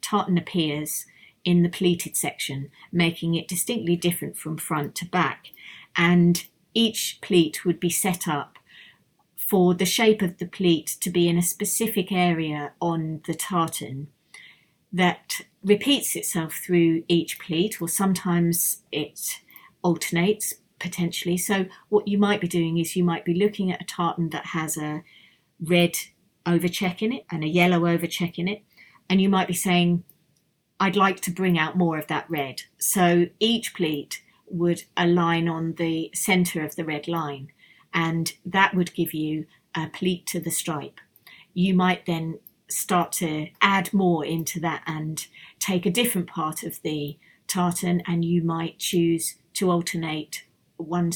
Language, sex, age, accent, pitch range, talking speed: English, female, 40-59, British, 165-185 Hz, 155 wpm